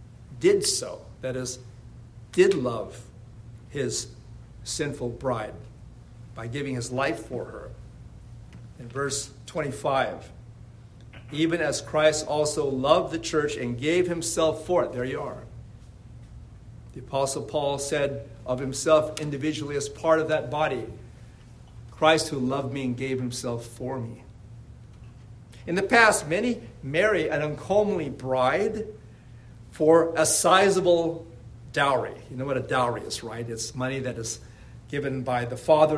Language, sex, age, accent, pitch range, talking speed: English, male, 50-69, American, 115-150 Hz, 135 wpm